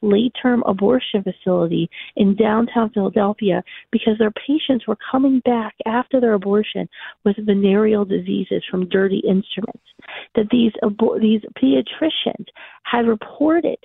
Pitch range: 205-250 Hz